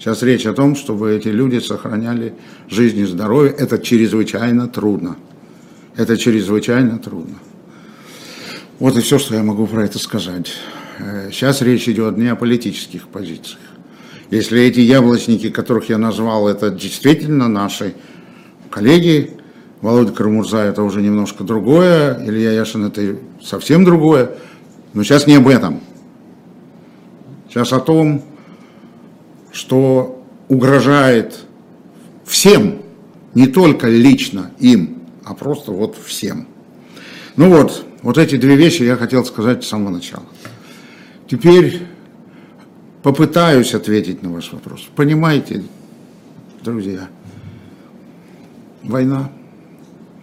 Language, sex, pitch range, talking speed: Russian, male, 110-145 Hz, 110 wpm